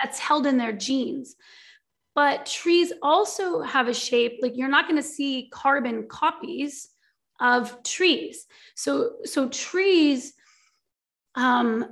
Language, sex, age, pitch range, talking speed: English, female, 30-49, 235-280 Hz, 125 wpm